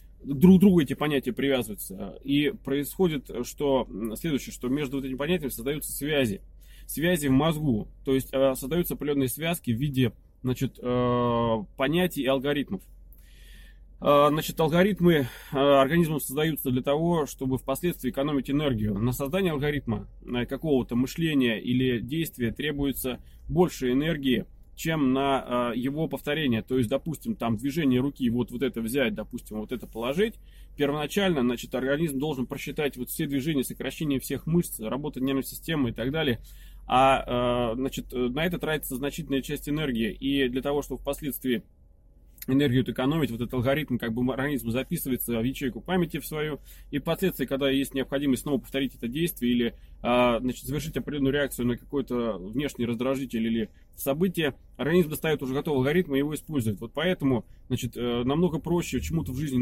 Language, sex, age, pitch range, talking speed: Russian, male, 20-39, 125-150 Hz, 145 wpm